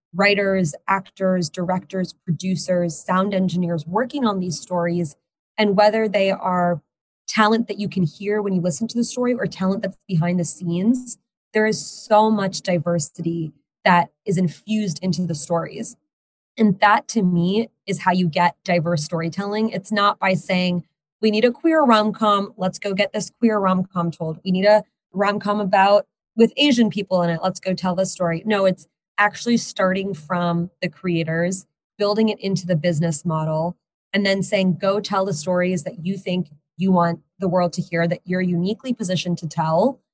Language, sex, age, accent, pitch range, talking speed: English, female, 20-39, American, 175-205 Hz, 175 wpm